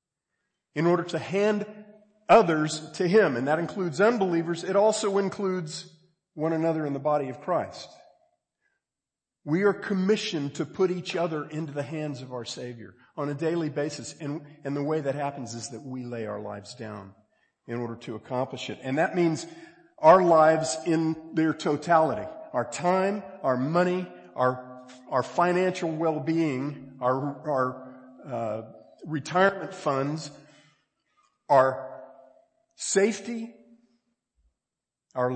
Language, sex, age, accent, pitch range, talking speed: English, male, 50-69, American, 130-185 Hz, 135 wpm